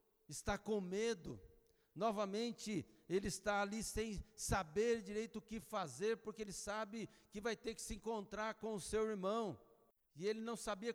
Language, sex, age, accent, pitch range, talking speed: Portuguese, male, 60-79, Brazilian, 165-220 Hz, 165 wpm